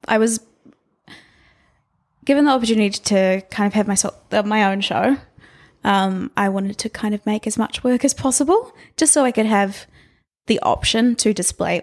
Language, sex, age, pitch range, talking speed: English, female, 20-39, 195-250 Hz, 170 wpm